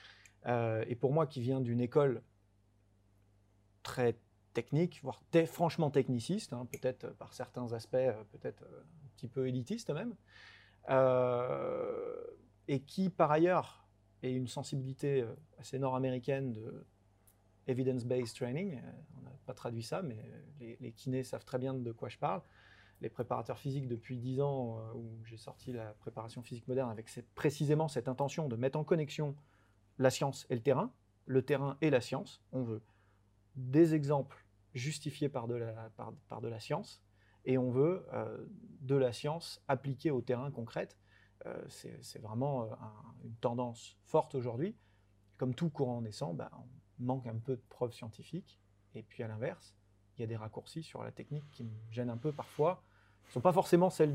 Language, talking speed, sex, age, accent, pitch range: French, 175 wpm, male, 30-49, French, 115-140 Hz